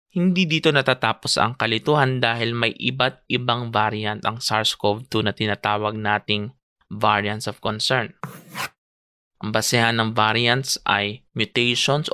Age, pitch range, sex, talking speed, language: 20-39, 110-140 Hz, male, 120 wpm, English